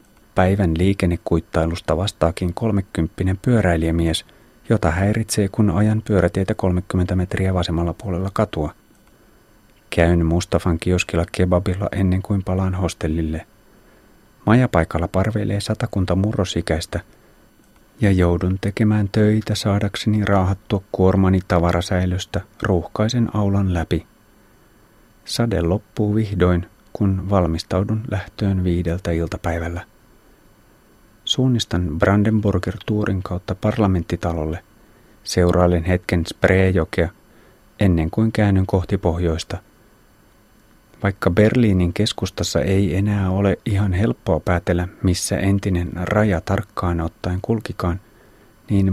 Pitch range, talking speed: 90-105 Hz, 90 wpm